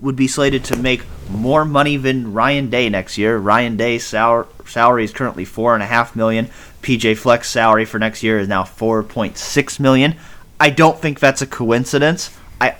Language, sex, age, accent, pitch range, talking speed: English, male, 30-49, American, 100-125 Hz, 190 wpm